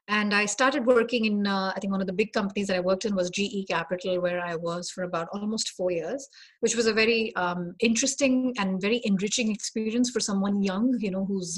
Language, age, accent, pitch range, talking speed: English, 30-49, Indian, 185-235 Hz, 230 wpm